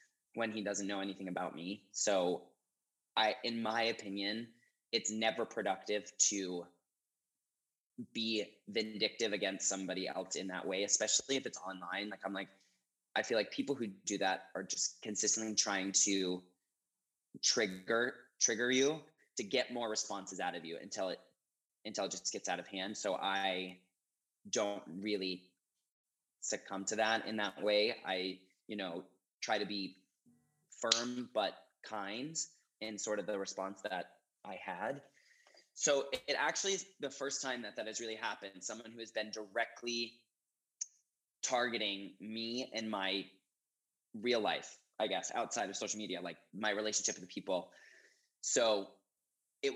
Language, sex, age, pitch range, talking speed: English, male, 20-39, 95-115 Hz, 150 wpm